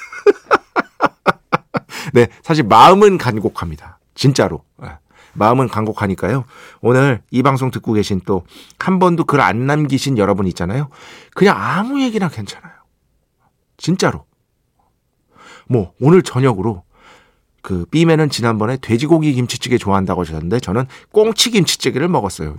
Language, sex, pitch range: Korean, male, 100-155 Hz